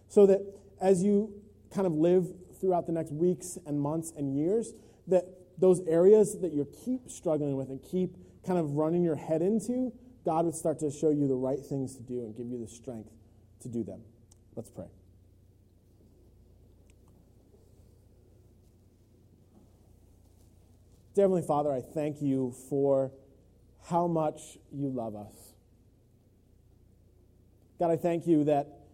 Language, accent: English, American